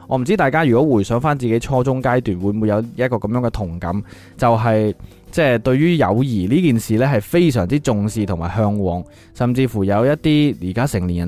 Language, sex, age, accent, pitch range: Chinese, male, 20-39, native, 110-145 Hz